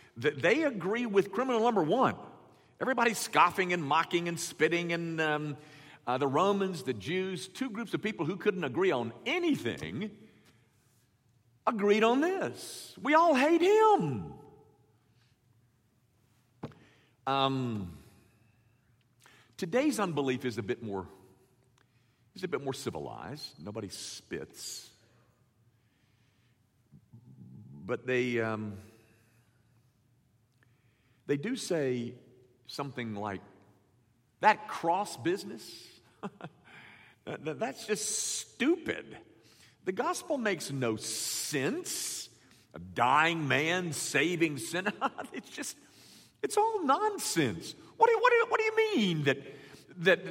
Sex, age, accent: male, 50-69, American